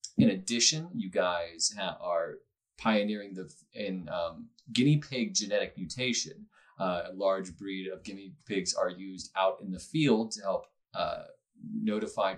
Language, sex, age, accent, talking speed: English, male, 20-39, American, 155 wpm